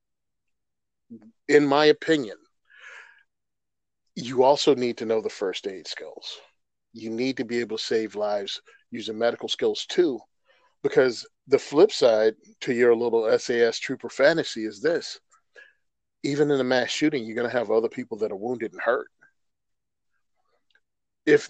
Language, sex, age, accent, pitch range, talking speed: English, male, 40-59, American, 120-160 Hz, 150 wpm